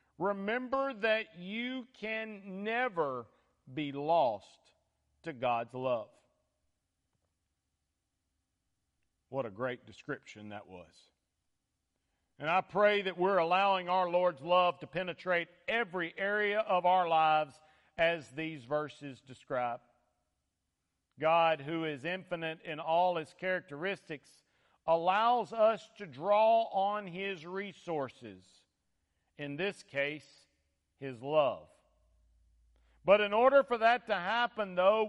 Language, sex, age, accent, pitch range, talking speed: English, male, 50-69, American, 145-210 Hz, 110 wpm